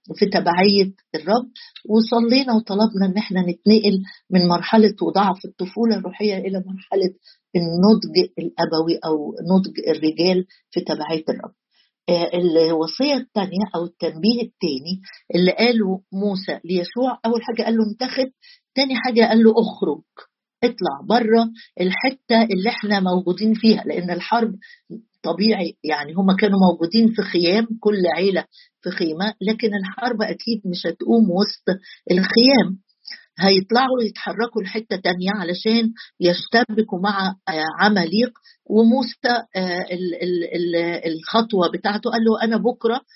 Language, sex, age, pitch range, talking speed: Arabic, female, 50-69, 180-230 Hz, 115 wpm